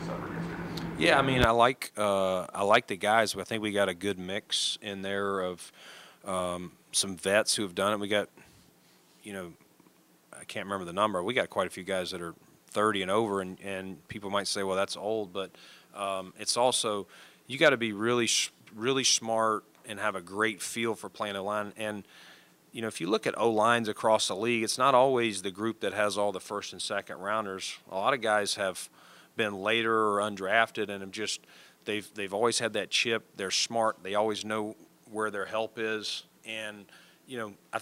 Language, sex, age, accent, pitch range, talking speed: English, male, 40-59, American, 95-110 Hz, 210 wpm